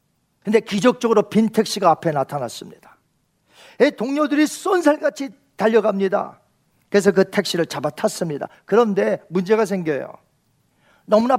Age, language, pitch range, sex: 40-59, Korean, 190-275 Hz, male